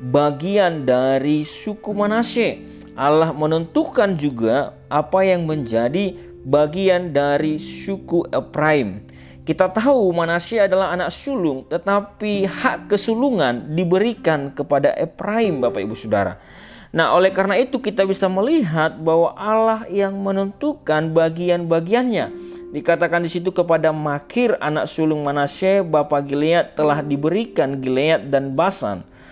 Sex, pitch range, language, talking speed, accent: male, 145-195 Hz, Indonesian, 115 wpm, native